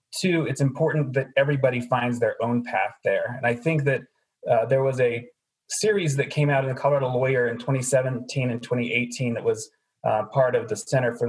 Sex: male